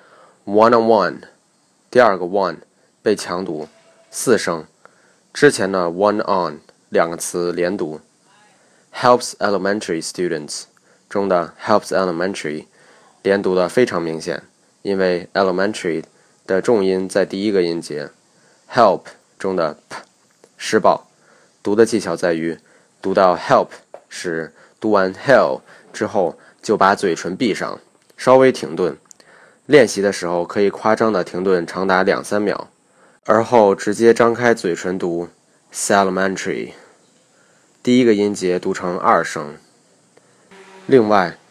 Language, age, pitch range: Chinese, 20-39, 90-115 Hz